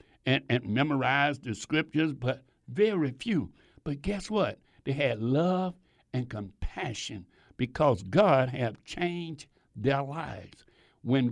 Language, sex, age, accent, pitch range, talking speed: English, male, 60-79, American, 120-165 Hz, 120 wpm